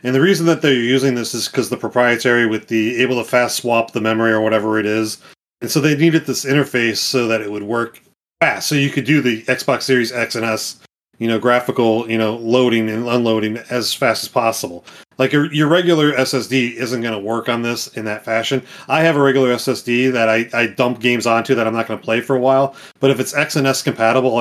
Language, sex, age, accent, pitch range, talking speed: English, male, 30-49, American, 115-140 Hz, 240 wpm